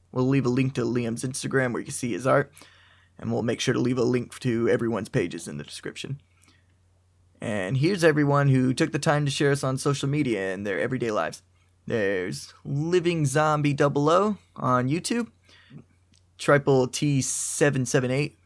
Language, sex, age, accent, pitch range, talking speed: English, male, 20-39, American, 95-145 Hz, 170 wpm